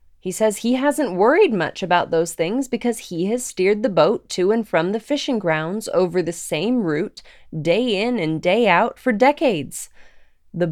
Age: 20-39